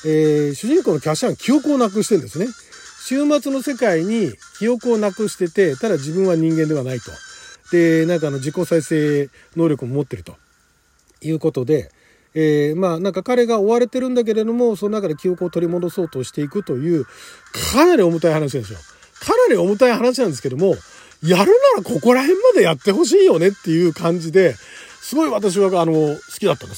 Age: 40-59